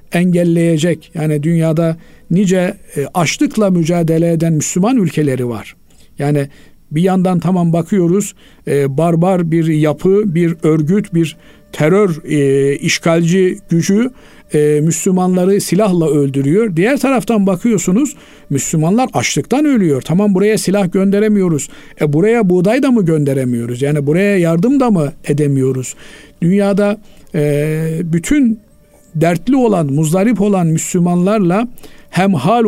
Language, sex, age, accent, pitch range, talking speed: Turkish, male, 50-69, native, 150-195 Hz, 105 wpm